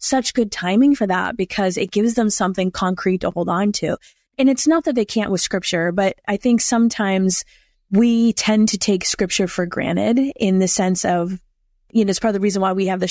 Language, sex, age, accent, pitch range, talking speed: English, female, 20-39, American, 185-225 Hz, 225 wpm